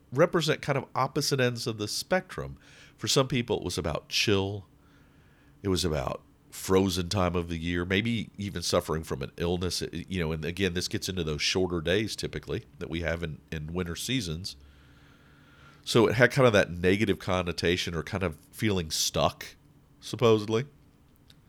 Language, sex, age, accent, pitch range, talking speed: English, male, 40-59, American, 85-115 Hz, 170 wpm